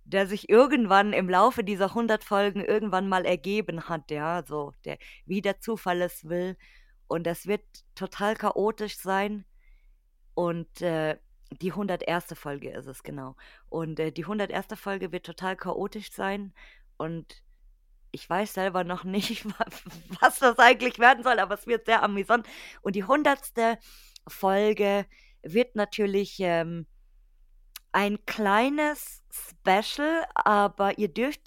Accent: German